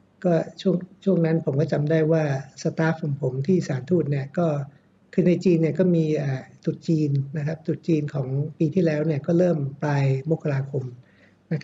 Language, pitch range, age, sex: Thai, 140-170 Hz, 60-79, male